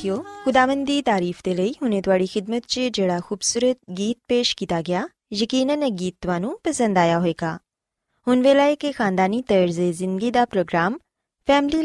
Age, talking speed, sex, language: 20-39, 150 wpm, female, Punjabi